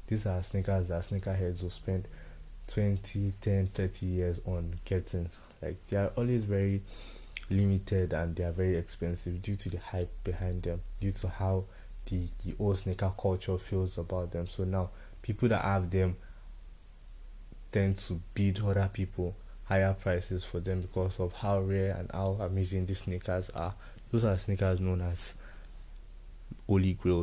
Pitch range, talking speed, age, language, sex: 90-100 Hz, 160 wpm, 20-39, English, male